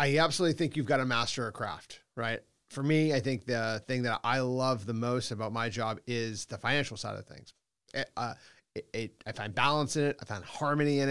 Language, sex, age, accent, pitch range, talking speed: Hebrew, male, 30-49, American, 110-140 Hz, 230 wpm